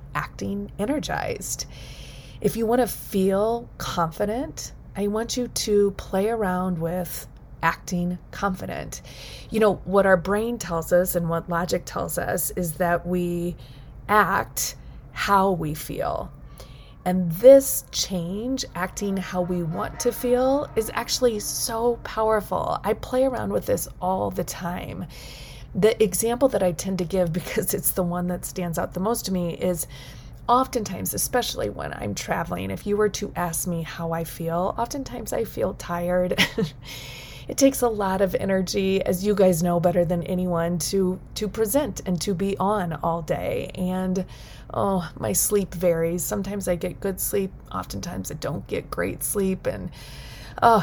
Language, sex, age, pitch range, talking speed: English, female, 30-49, 170-210 Hz, 160 wpm